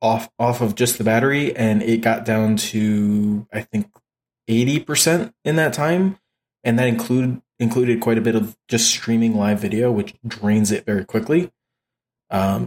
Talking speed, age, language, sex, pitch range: 165 wpm, 20-39, English, male, 110-125 Hz